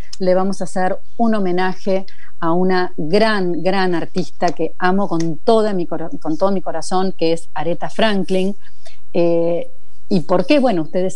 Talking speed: 165 wpm